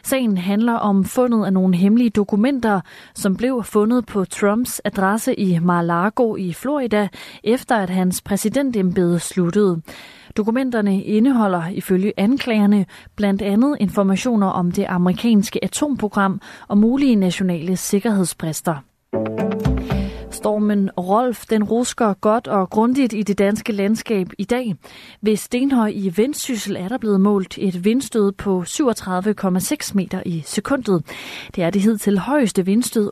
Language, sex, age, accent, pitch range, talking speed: Danish, female, 30-49, native, 180-225 Hz, 130 wpm